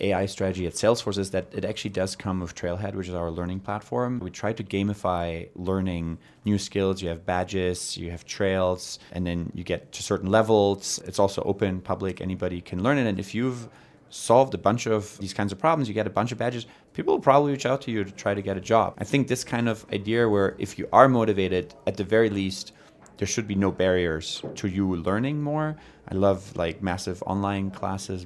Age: 20-39